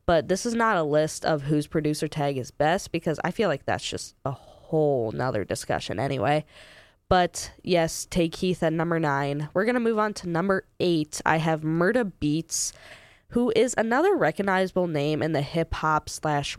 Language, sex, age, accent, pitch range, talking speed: English, female, 20-39, American, 150-195 Hz, 190 wpm